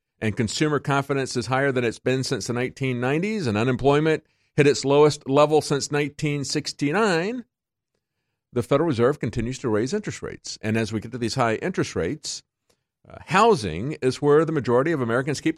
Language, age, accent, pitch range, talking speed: English, 50-69, American, 110-145 Hz, 175 wpm